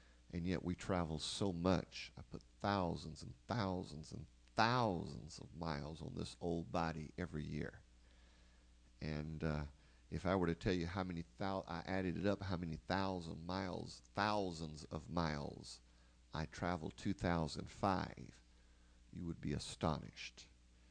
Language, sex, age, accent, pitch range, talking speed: English, male, 50-69, American, 70-95 Hz, 145 wpm